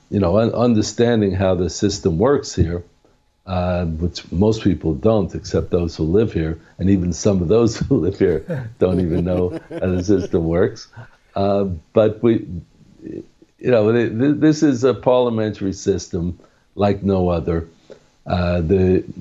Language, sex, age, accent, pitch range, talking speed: English, male, 60-79, American, 90-115 Hz, 150 wpm